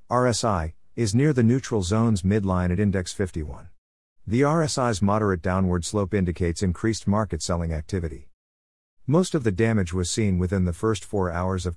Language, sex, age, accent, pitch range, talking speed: English, male, 50-69, American, 90-115 Hz, 165 wpm